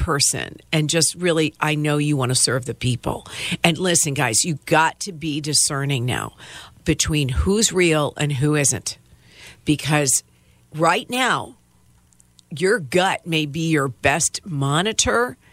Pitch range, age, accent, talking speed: 150-200 Hz, 50-69, American, 145 wpm